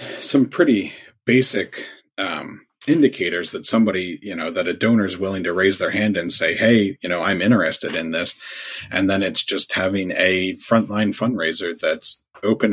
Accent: American